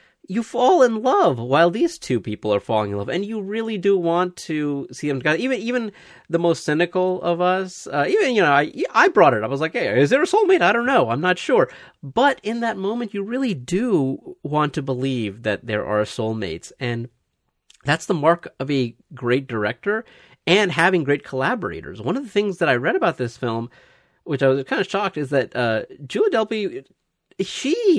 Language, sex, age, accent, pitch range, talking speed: English, male, 30-49, American, 125-190 Hz, 210 wpm